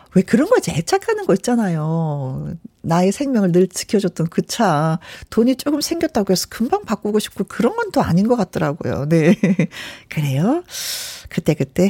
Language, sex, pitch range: Korean, female, 175-265 Hz